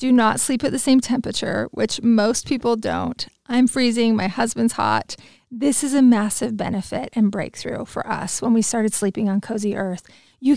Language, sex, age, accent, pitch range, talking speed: English, female, 30-49, American, 205-255 Hz, 185 wpm